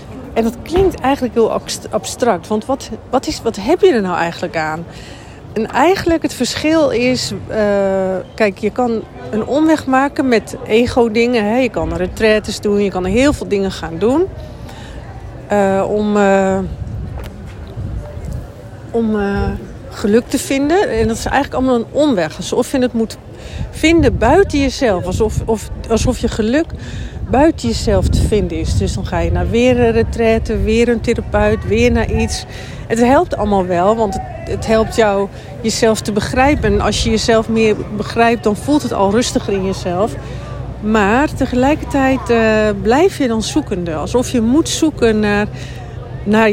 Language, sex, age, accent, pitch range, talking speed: Dutch, female, 40-59, Dutch, 195-255 Hz, 155 wpm